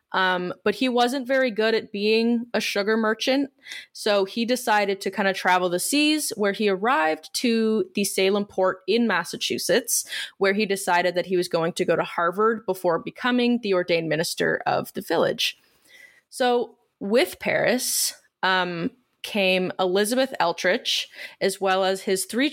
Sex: female